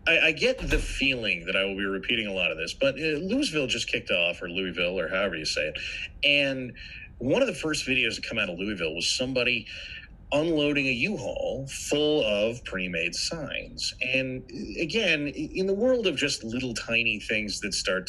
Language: English